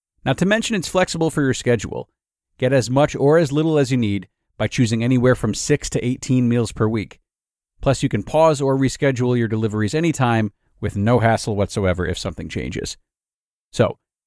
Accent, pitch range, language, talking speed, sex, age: American, 110-145 Hz, English, 185 wpm, male, 40-59